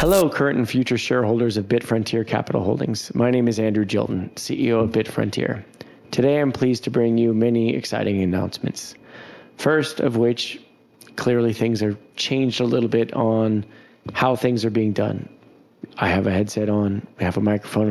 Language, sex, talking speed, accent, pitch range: English, male, 170 wpm, American, 110-125 Hz